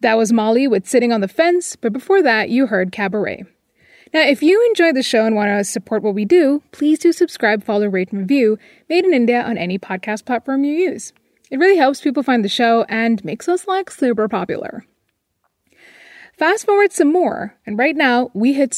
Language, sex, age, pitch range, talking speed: English, female, 20-39, 220-315 Hz, 210 wpm